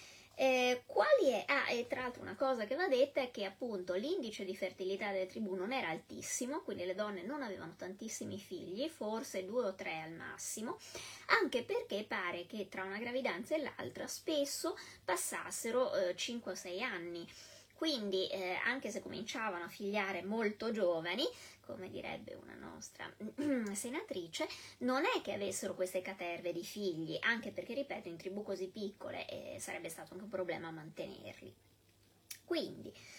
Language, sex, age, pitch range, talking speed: Italian, female, 20-39, 190-270 Hz, 160 wpm